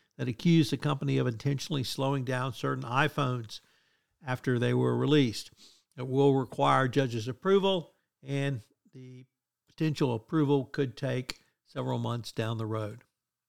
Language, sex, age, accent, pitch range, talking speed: English, male, 60-79, American, 125-150 Hz, 135 wpm